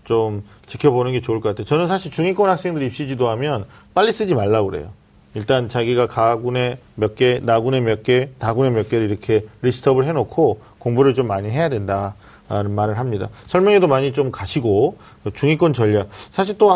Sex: male